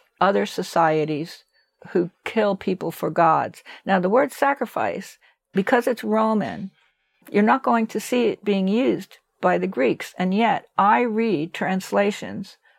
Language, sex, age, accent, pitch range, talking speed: English, female, 60-79, American, 170-220 Hz, 140 wpm